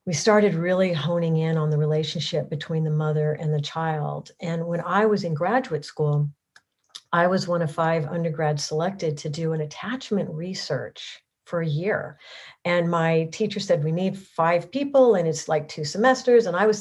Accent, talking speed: American, 185 wpm